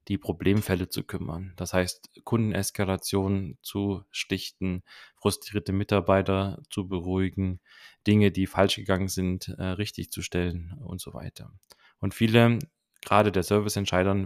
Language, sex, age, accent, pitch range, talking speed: German, male, 20-39, German, 95-105 Hz, 120 wpm